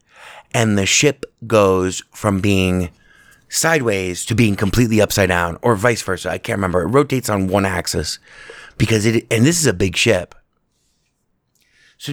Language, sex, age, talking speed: English, male, 30-49, 160 wpm